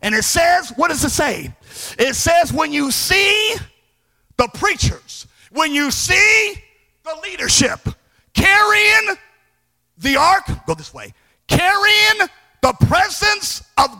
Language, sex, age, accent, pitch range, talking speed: English, male, 50-69, American, 290-395 Hz, 130 wpm